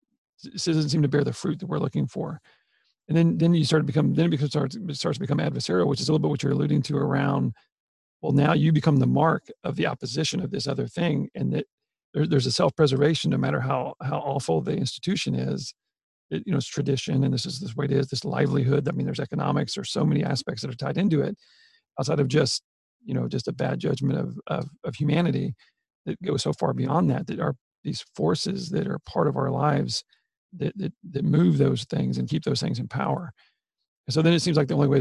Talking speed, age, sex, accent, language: 245 wpm, 40-59, male, American, English